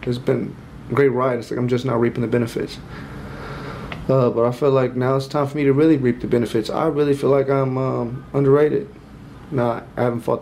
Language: English